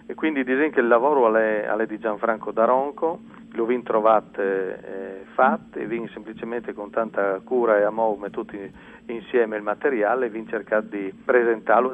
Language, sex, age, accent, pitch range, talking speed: Italian, male, 40-59, native, 105-120 Hz, 155 wpm